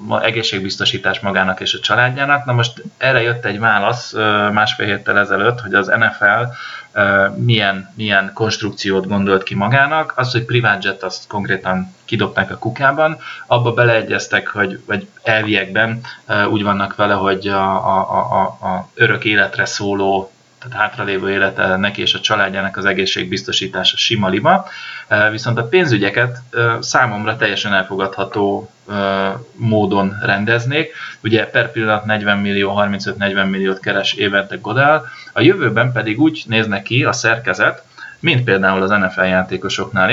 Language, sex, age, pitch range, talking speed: Hungarian, male, 20-39, 95-115 Hz, 130 wpm